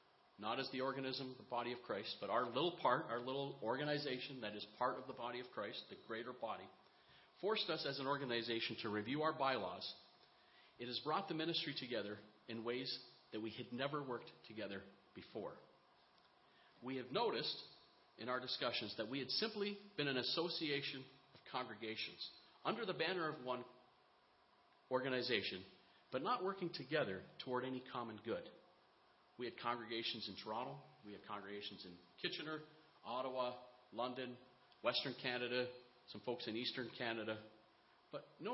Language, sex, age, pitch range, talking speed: English, male, 40-59, 120-150 Hz, 155 wpm